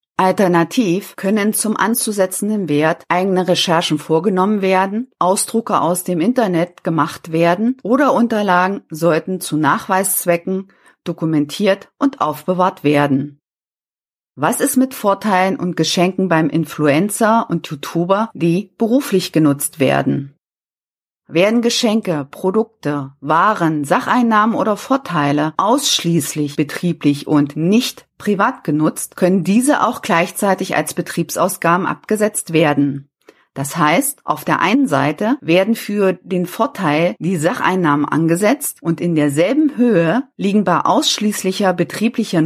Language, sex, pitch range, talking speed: German, female, 160-215 Hz, 115 wpm